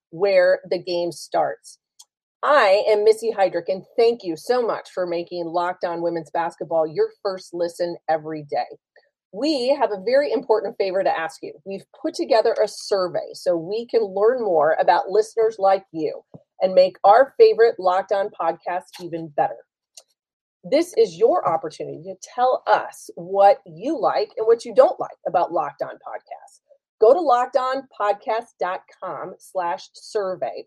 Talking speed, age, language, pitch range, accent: 155 wpm, 30-49, English, 185-275 Hz, American